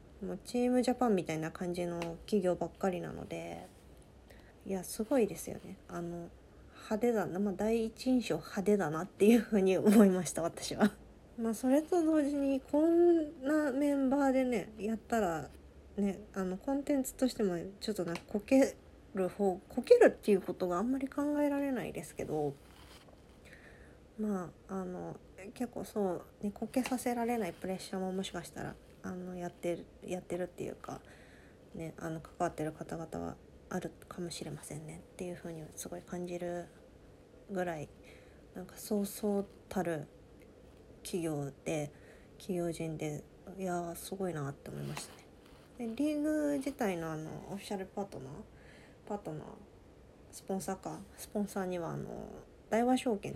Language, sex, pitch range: Japanese, female, 165-230 Hz